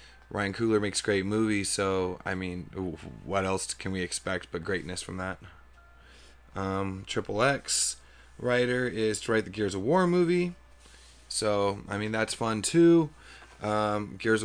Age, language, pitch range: 20-39, English, 90-110 Hz